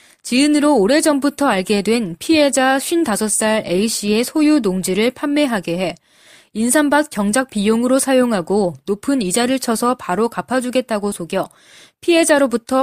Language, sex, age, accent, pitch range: Korean, female, 20-39, native, 200-275 Hz